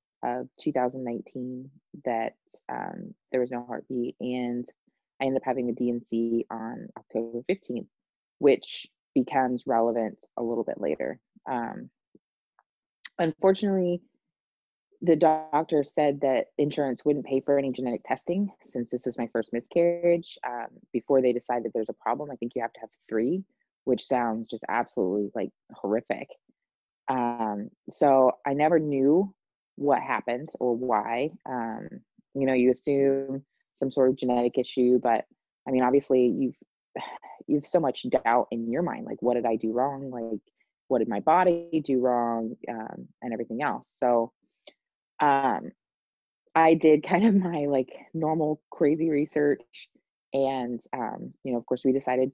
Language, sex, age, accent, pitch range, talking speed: English, female, 20-39, American, 120-145 Hz, 150 wpm